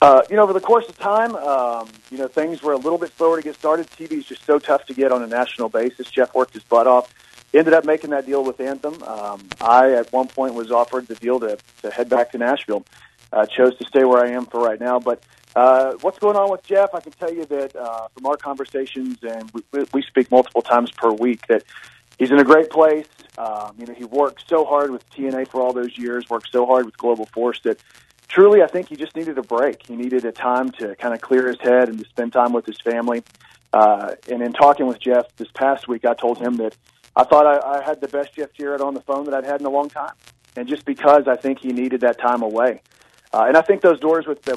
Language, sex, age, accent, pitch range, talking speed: English, male, 40-59, American, 120-145 Hz, 260 wpm